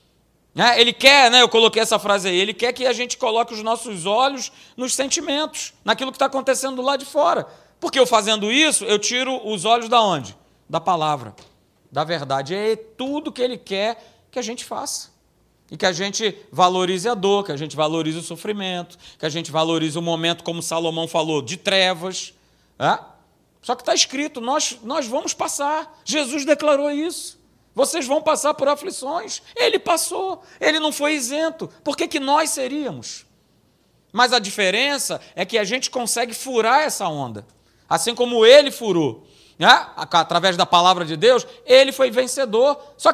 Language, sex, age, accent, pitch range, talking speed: Portuguese, male, 40-59, Brazilian, 200-295 Hz, 175 wpm